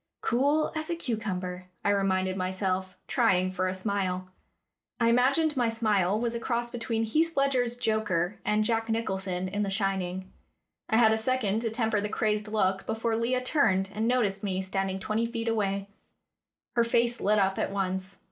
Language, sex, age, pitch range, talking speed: English, female, 10-29, 195-240 Hz, 175 wpm